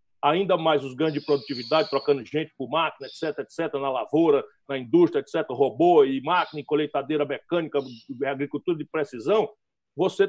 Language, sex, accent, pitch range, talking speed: Portuguese, male, Brazilian, 150-220 Hz, 155 wpm